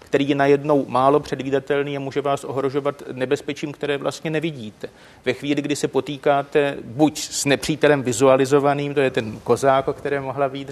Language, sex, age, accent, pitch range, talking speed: Czech, male, 30-49, native, 140-160 Hz, 170 wpm